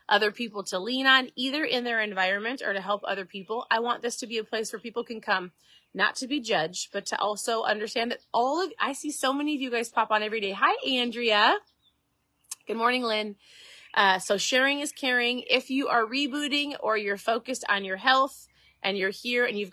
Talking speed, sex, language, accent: 220 wpm, female, English, American